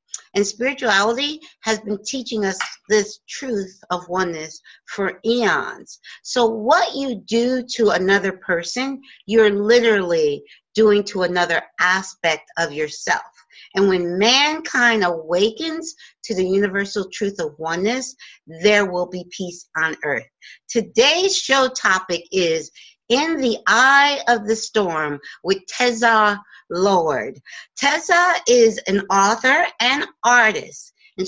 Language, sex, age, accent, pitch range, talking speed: English, female, 50-69, American, 195-260 Hz, 120 wpm